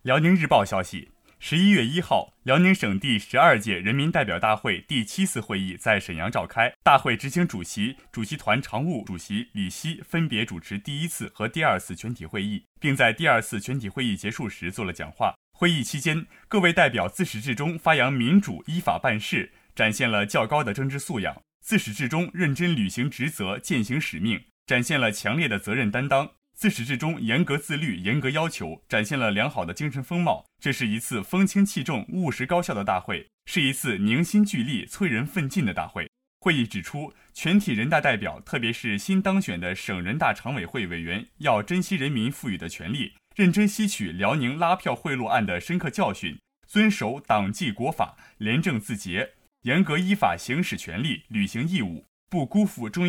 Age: 20-39